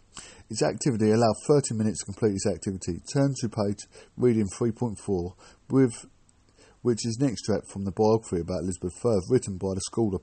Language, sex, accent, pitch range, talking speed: English, male, British, 95-115 Hz, 170 wpm